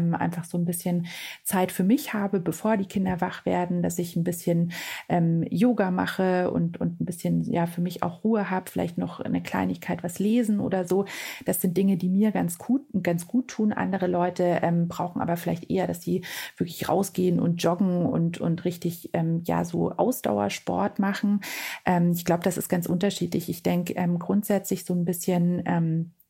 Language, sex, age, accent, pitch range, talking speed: German, female, 30-49, German, 170-200 Hz, 185 wpm